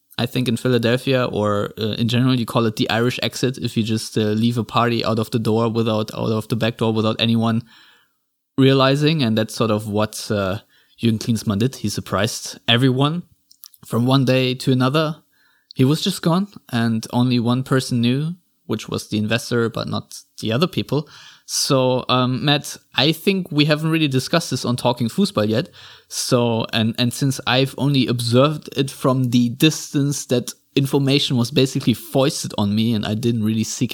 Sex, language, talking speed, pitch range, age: male, English, 185 wpm, 115-145 Hz, 20-39